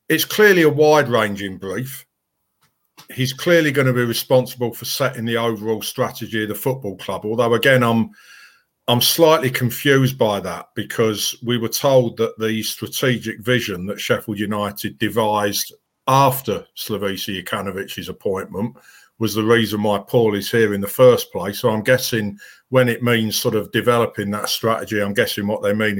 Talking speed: 165 wpm